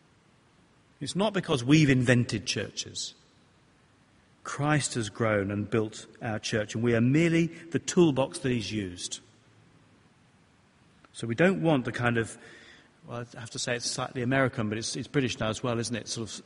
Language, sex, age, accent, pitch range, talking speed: English, male, 40-59, British, 110-150 Hz, 175 wpm